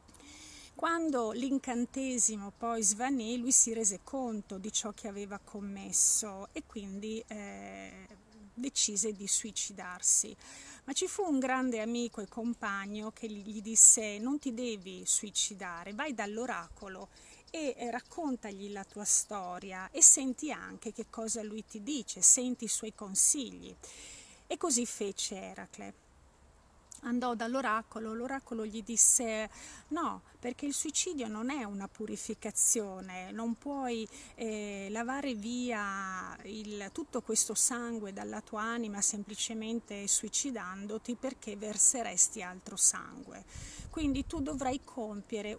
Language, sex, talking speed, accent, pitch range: Italian, female, 120 wpm, native, 205-245 Hz